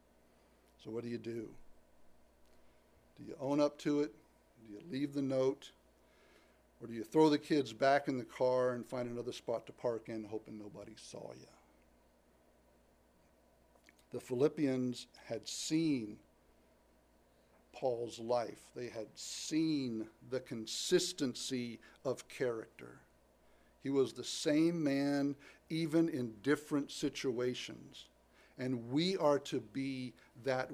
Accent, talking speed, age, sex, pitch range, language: American, 125 wpm, 60-79, male, 115-155 Hz, English